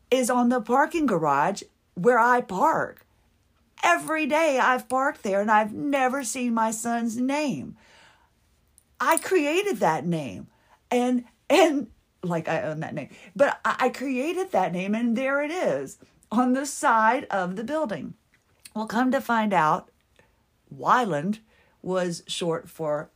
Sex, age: female, 50-69